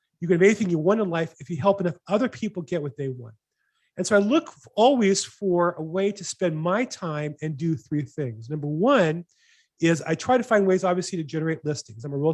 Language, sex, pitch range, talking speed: English, male, 150-200 Hz, 240 wpm